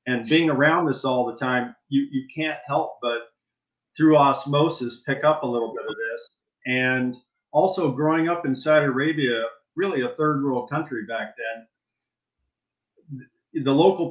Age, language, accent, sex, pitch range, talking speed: 40-59, English, American, male, 125-150 Hz, 155 wpm